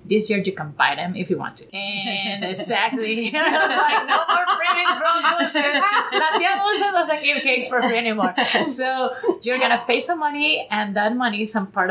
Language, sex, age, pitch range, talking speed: English, female, 30-49, 185-240 Hz, 200 wpm